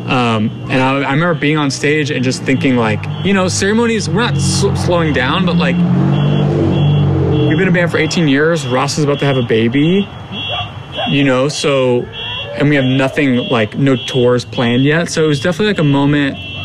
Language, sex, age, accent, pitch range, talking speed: English, male, 30-49, American, 115-145 Hz, 195 wpm